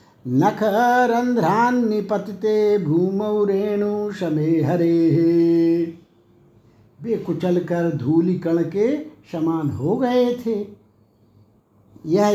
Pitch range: 165-210 Hz